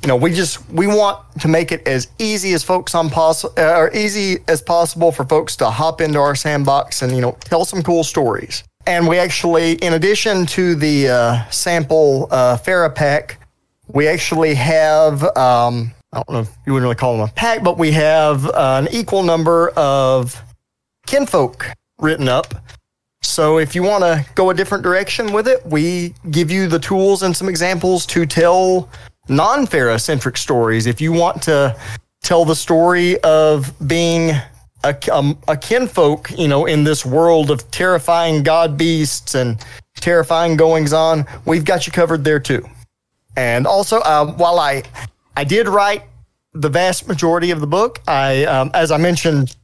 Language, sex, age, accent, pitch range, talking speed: English, male, 40-59, American, 135-175 Hz, 175 wpm